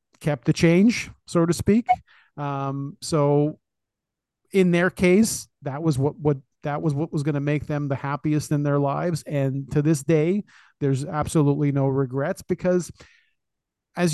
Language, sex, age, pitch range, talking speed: English, male, 40-59, 140-170 Hz, 160 wpm